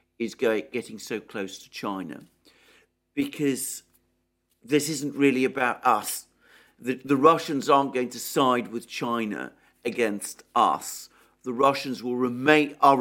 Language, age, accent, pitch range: English, 50-69, British, 115-155 Hz